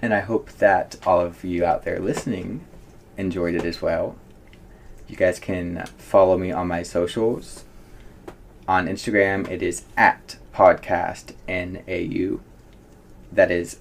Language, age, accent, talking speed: English, 20-39, American, 130 wpm